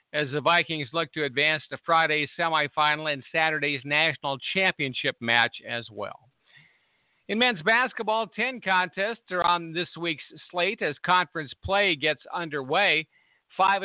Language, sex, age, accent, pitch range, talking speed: English, male, 50-69, American, 155-185 Hz, 140 wpm